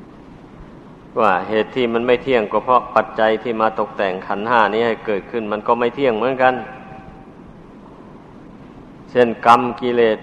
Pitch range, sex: 115-130 Hz, male